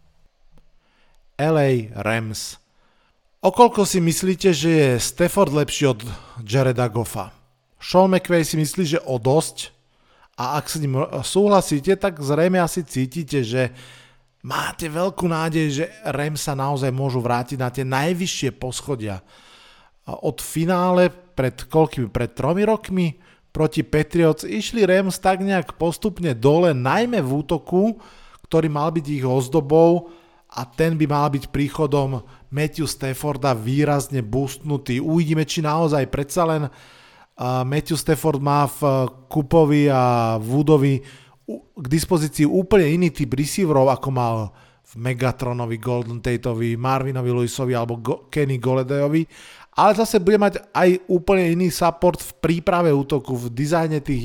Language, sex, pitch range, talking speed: Slovak, male, 130-165 Hz, 130 wpm